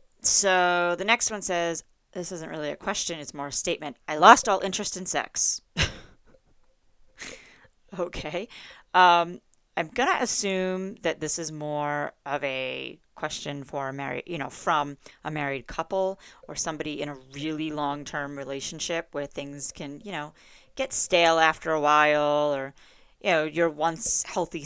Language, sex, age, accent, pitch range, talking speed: English, female, 30-49, American, 150-180 Hz, 160 wpm